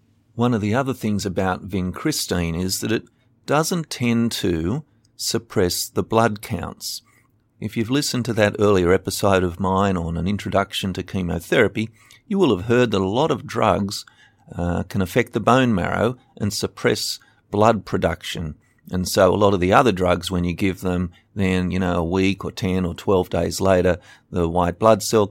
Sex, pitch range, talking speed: male, 95-115 Hz, 185 wpm